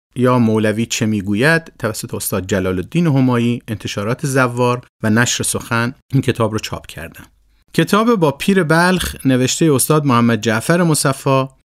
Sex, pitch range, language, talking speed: male, 115-150 Hz, Persian, 145 wpm